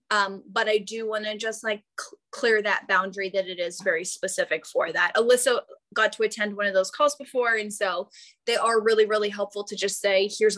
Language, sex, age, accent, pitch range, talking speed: English, female, 10-29, American, 210-275 Hz, 215 wpm